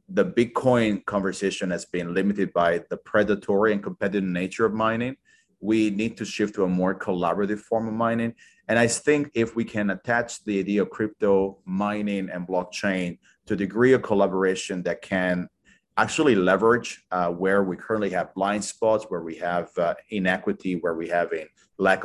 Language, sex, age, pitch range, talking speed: English, male, 30-49, 95-115 Hz, 175 wpm